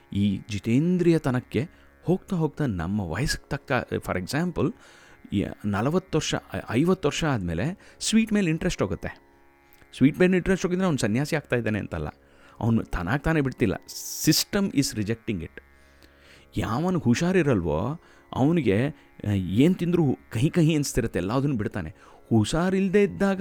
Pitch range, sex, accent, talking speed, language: 90-145 Hz, male, native, 120 wpm, Kannada